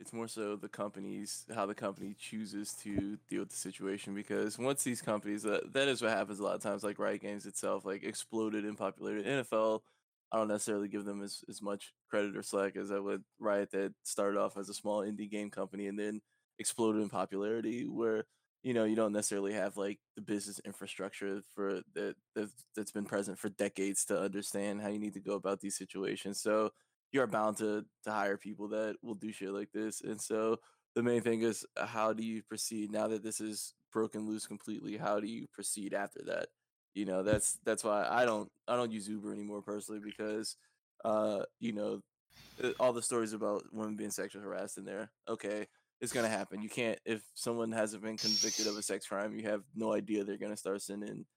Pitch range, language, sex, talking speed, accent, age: 100-110 Hz, English, male, 210 wpm, American, 20-39